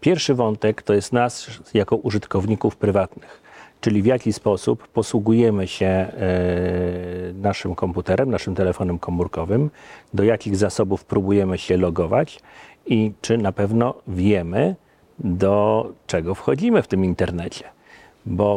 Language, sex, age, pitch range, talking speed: Polish, male, 40-59, 95-115 Hz, 120 wpm